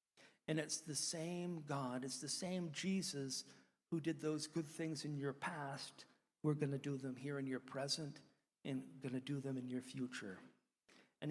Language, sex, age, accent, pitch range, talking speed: English, male, 50-69, American, 125-155 Hz, 185 wpm